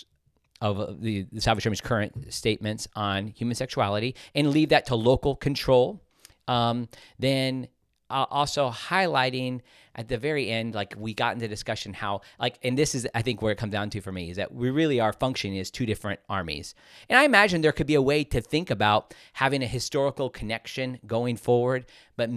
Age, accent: 40-59, American